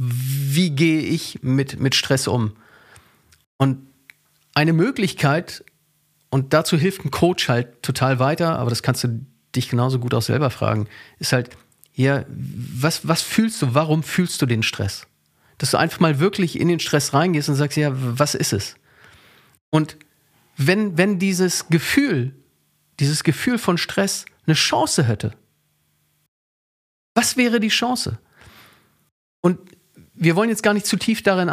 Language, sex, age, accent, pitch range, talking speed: German, male, 40-59, German, 135-180 Hz, 150 wpm